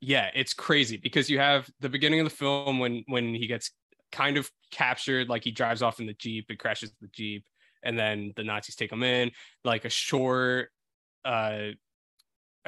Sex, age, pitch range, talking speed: male, 20-39, 110-130 Hz, 190 wpm